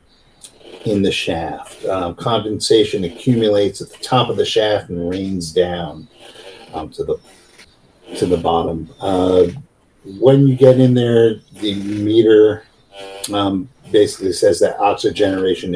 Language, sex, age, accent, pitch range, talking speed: English, male, 50-69, American, 95-145 Hz, 130 wpm